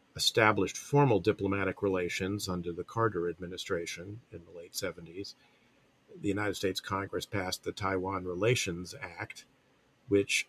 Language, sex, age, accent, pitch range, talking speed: English, male, 50-69, American, 95-110 Hz, 125 wpm